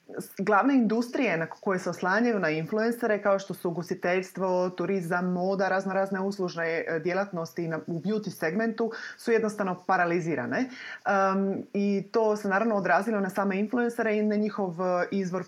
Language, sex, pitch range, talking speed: Croatian, female, 180-220 Hz, 140 wpm